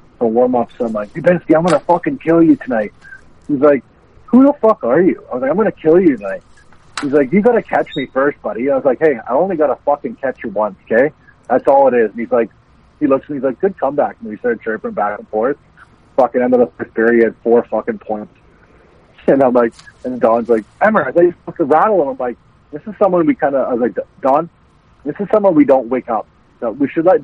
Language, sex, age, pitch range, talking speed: English, male, 40-59, 115-150 Hz, 250 wpm